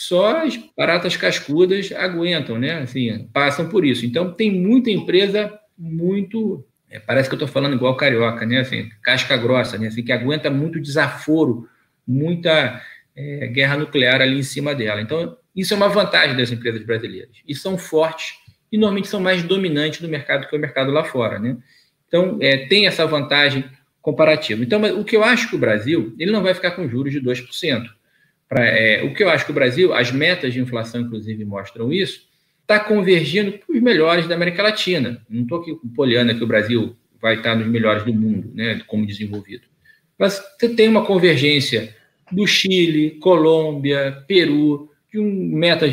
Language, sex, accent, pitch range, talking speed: Portuguese, male, Brazilian, 125-180 Hz, 180 wpm